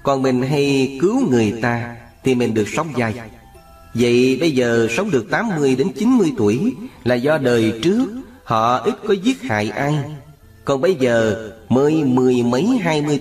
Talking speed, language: 175 wpm, Vietnamese